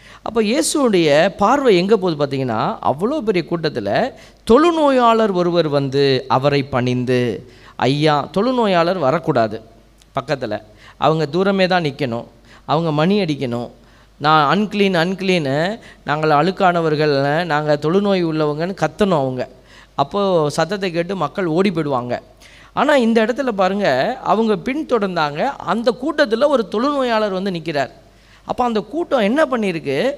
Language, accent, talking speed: Tamil, native, 115 wpm